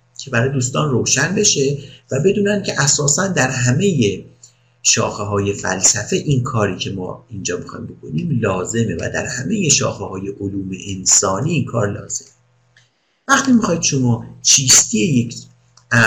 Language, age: Persian, 50-69